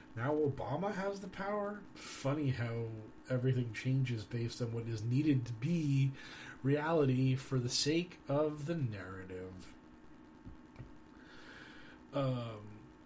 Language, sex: English, male